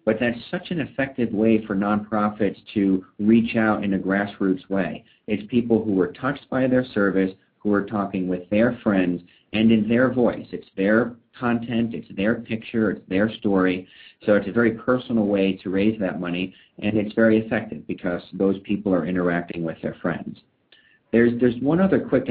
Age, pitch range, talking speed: 40-59, 95-115 Hz, 185 wpm